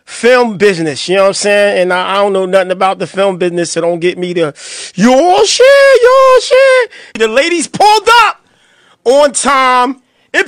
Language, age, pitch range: English, 40-59, 190-260 Hz